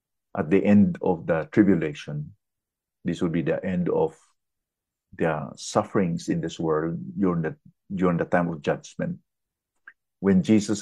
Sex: male